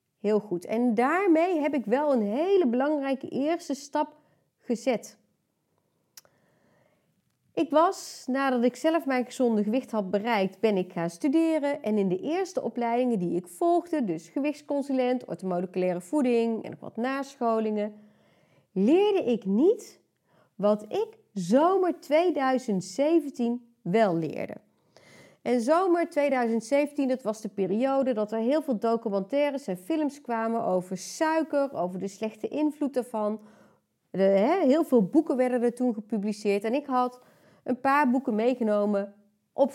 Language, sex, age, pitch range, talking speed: Dutch, female, 30-49, 215-300 Hz, 135 wpm